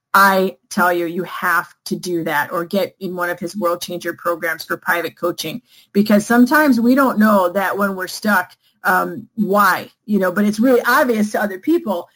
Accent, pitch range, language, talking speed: American, 190-230 Hz, English, 195 wpm